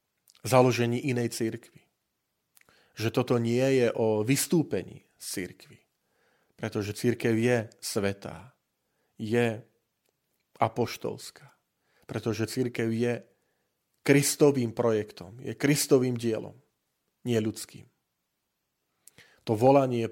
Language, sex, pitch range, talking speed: Slovak, male, 110-125 Hz, 85 wpm